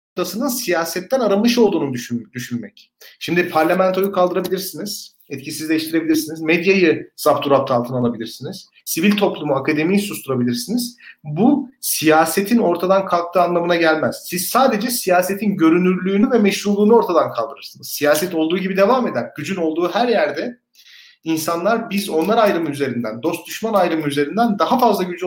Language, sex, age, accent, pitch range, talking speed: Turkish, male, 40-59, native, 160-215 Hz, 125 wpm